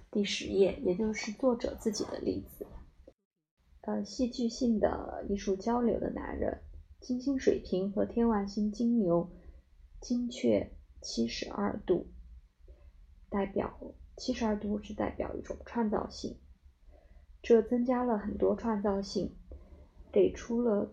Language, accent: Chinese, native